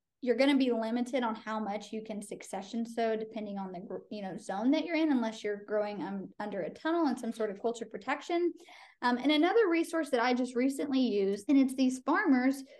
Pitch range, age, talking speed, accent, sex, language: 215-265 Hz, 20-39, 220 wpm, American, female, English